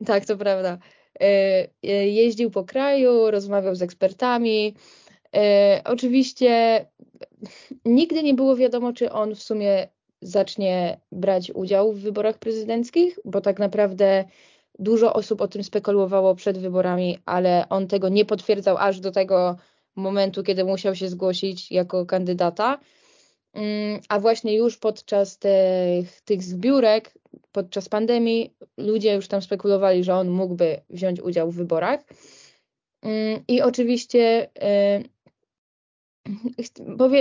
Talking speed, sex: 115 wpm, female